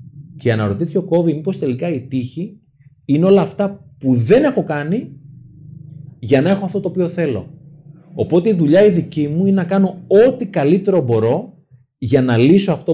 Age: 30-49